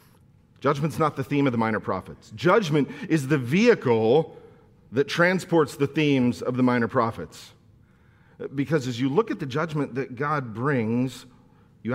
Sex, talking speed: male, 155 wpm